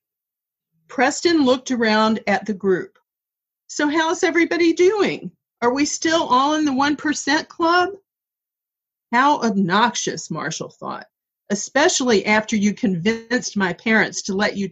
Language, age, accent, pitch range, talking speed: English, 50-69, American, 195-260 Hz, 125 wpm